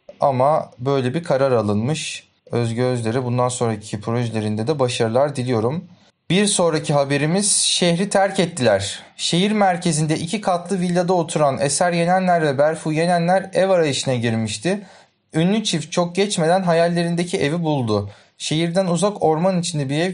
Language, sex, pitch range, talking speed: Turkish, male, 135-175 Hz, 135 wpm